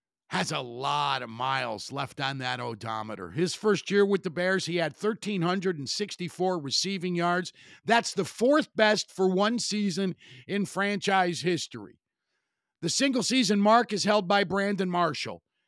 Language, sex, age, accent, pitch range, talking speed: English, male, 50-69, American, 170-220 Hz, 145 wpm